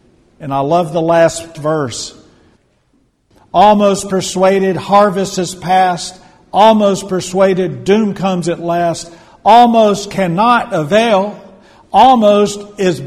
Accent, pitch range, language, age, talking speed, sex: American, 140-190 Hz, English, 50-69, 100 wpm, male